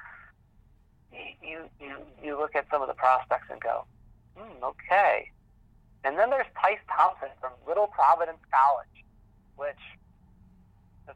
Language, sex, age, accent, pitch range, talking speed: English, male, 40-59, American, 105-160 Hz, 130 wpm